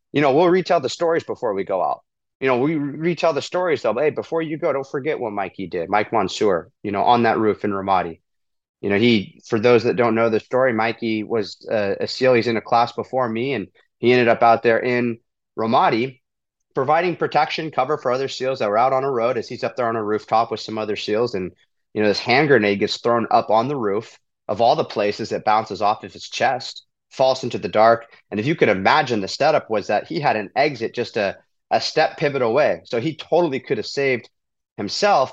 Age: 30-49